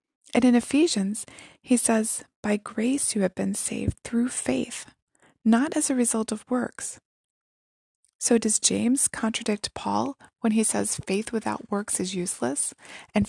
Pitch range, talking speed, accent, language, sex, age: 210-250 Hz, 150 wpm, American, English, female, 20-39